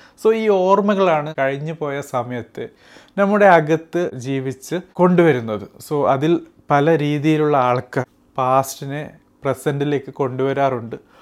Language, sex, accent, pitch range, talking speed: Malayalam, male, native, 130-165 Hz, 95 wpm